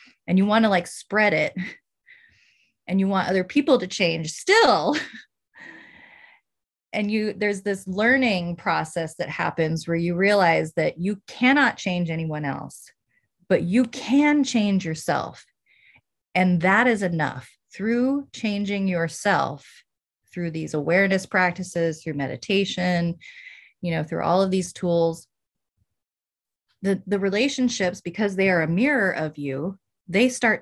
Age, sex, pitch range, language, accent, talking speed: 30-49, female, 170-220 Hz, English, American, 135 wpm